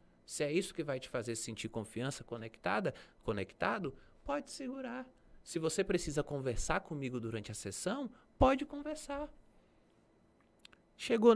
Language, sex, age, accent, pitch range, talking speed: Portuguese, male, 20-39, Brazilian, 105-145 Hz, 120 wpm